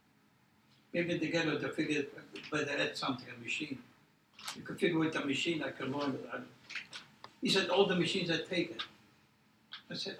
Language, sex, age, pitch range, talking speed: English, male, 60-79, 145-180 Hz, 170 wpm